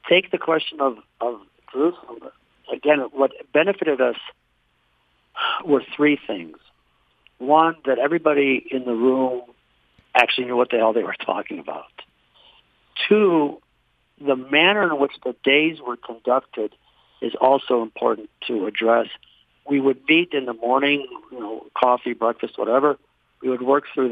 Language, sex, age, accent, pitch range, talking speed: English, male, 50-69, American, 120-150 Hz, 140 wpm